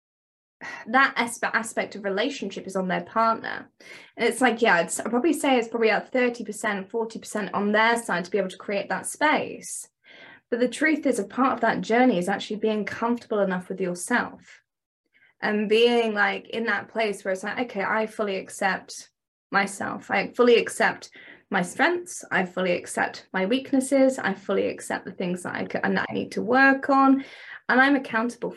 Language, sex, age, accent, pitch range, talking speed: English, female, 20-39, British, 205-255 Hz, 180 wpm